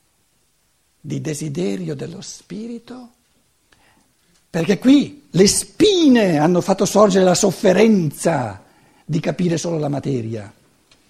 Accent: native